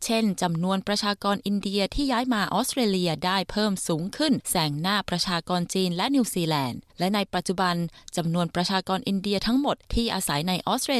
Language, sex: Thai, female